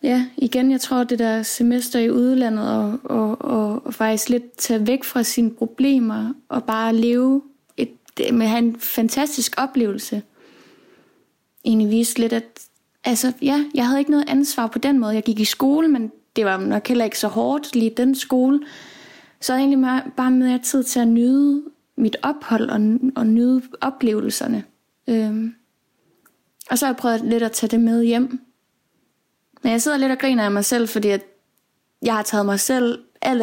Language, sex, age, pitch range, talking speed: Danish, female, 20-39, 220-255 Hz, 185 wpm